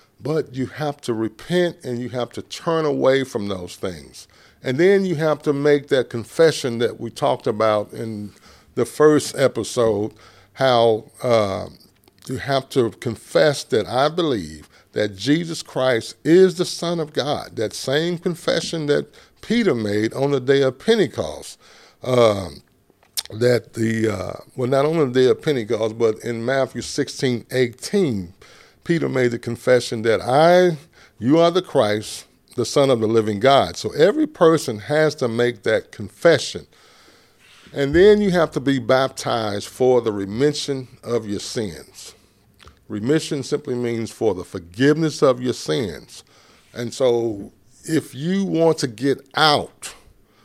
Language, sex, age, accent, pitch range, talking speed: English, male, 50-69, American, 110-150 Hz, 150 wpm